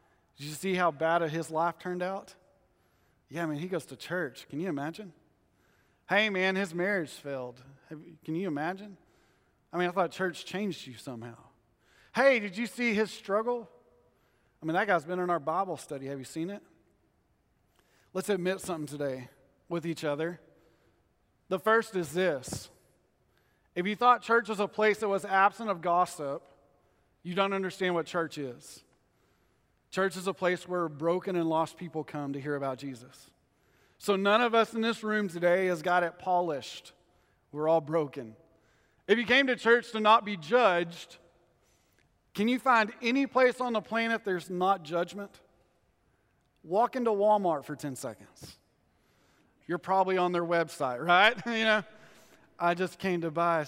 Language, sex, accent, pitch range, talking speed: English, male, American, 155-205 Hz, 170 wpm